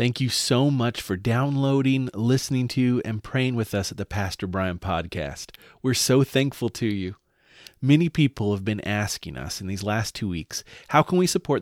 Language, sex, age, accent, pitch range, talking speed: English, male, 30-49, American, 95-125 Hz, 190 wpm